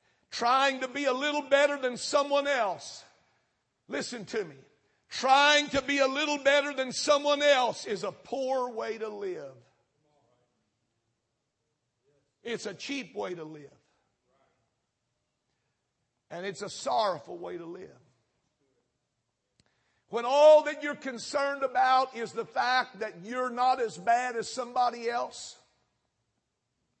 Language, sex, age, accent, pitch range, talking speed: English, male, 60-79, American, 235-290 Hz, 125 wpm